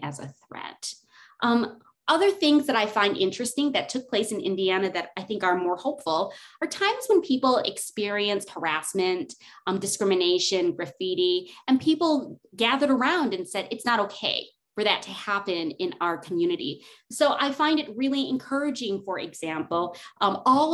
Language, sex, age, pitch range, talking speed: English, female, 30-49, 195-275 Hz, 160 wpm